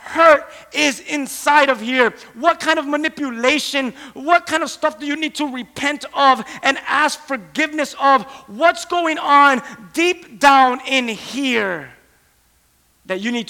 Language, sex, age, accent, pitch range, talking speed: English, male, 30-49, American, 260-310 Hz, 145 wpm